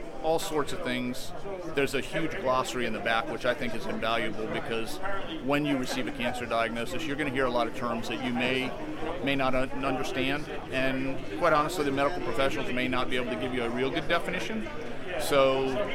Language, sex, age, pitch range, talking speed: English, male, 40-59, 120-135 Hz, 205 wpm